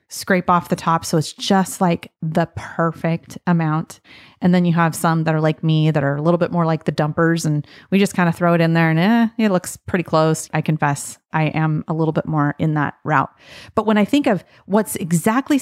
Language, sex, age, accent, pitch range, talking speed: English, female, 30-49, American, 165-210 Hz, 240 wpm